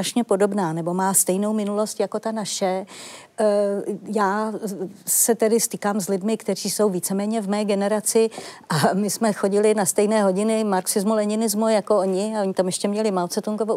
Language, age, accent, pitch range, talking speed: Czech, 50-69, native, 190-220 Hz, 165 wpm